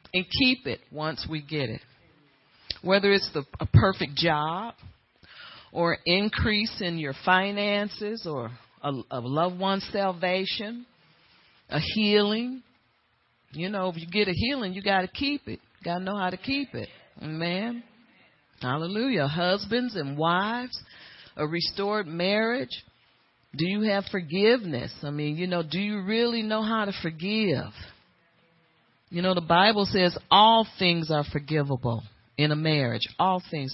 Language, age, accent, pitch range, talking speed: English, 40-59, American, 160-215 Hz, 145 wpm